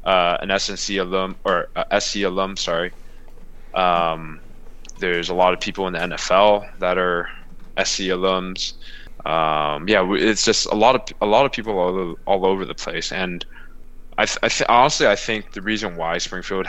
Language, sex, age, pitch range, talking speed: English, male, 20-39, 85-100 Hz, 180 wpm